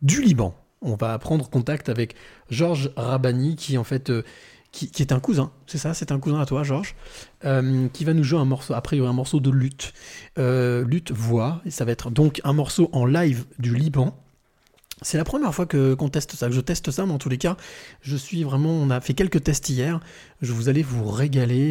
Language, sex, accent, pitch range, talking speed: French, male, French, 130-160 Hz, 230 wpm